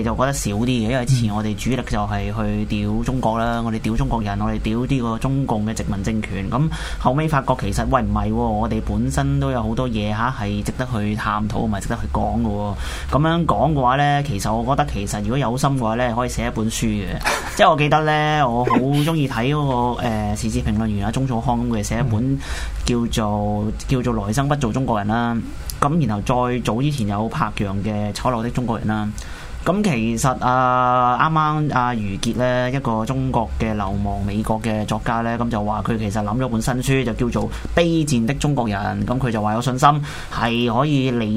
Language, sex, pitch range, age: Chinese, male, 105-130 Hz, 20-39